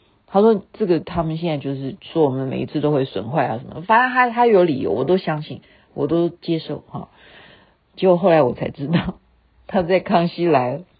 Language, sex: Chinese, female